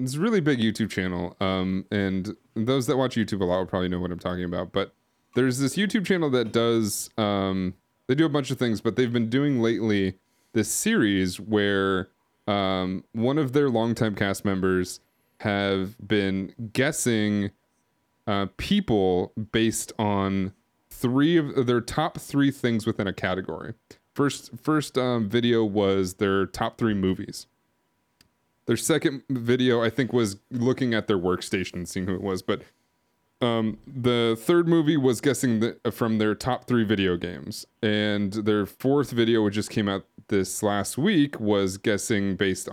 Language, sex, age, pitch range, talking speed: English, male, 20-39, 95-125 Hz, 165 wpm